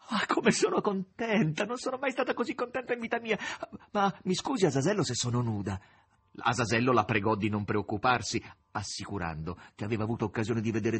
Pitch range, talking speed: 95-130 Hz, 185 wpm